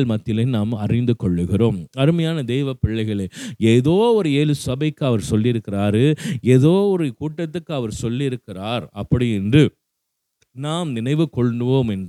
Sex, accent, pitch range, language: male, native, 115-170 Hz, Tamil